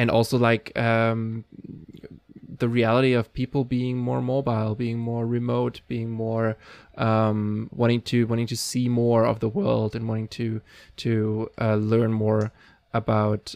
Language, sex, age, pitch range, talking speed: English, male, 20-39, 110-120 Hz, 150 wpm